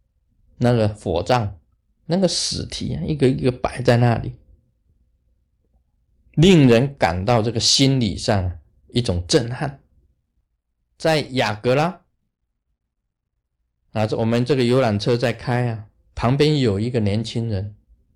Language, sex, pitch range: Chinese, male, 110-160 Hz